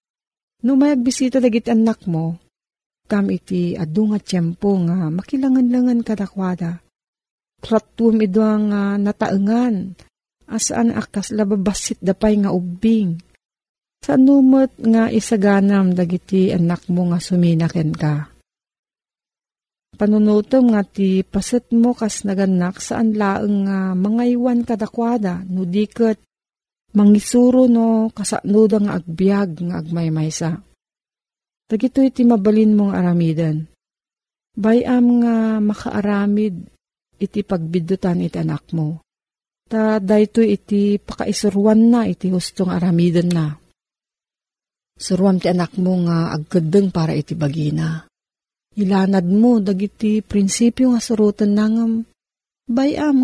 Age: 40-59